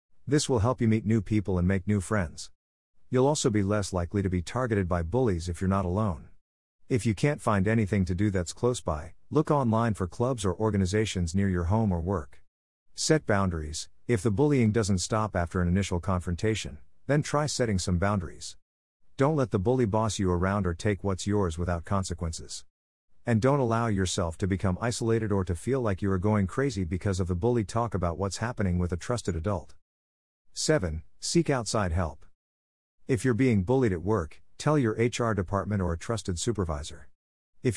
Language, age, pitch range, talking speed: English, 50-69, 90-115 Hz, 190 wpm